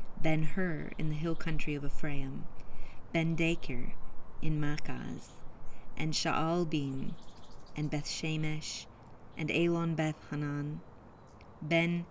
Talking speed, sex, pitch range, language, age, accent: 110 wpm, female, 135-160 Hz, English, 30-49, American